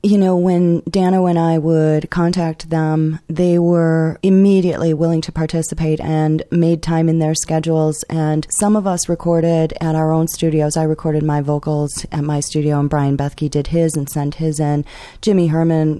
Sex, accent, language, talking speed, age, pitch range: female, American, English, 180 wpm, 30-49, 150-165 Hz